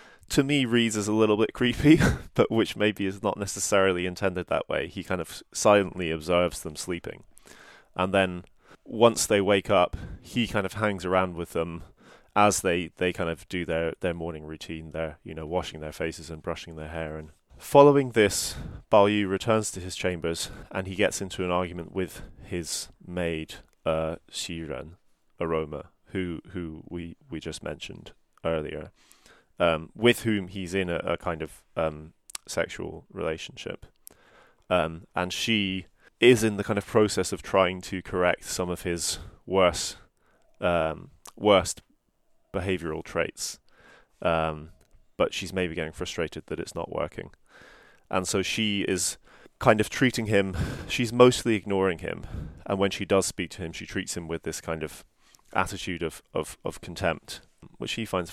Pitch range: 85-100 Hz